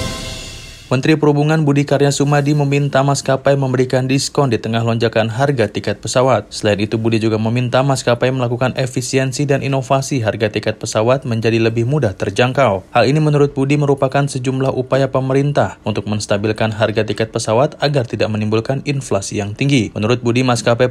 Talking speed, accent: 155 wpm, native